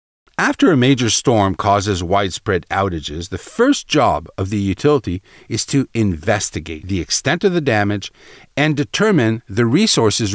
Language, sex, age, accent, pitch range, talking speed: English, male, 50-69, American, 100-145 Hz, 145 wpm